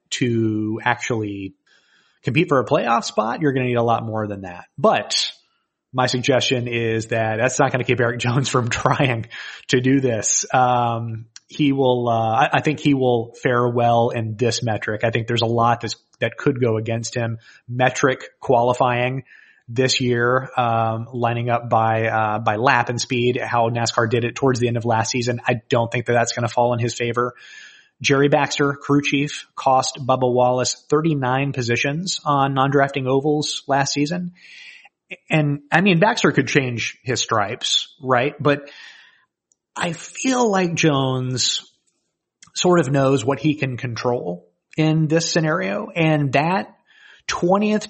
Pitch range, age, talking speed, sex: 120-145 Hz, 30-49, 165 wpm, male